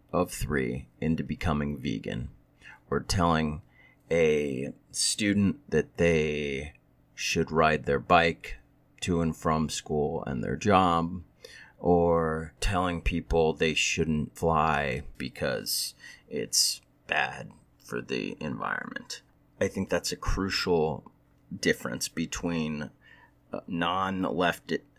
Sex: male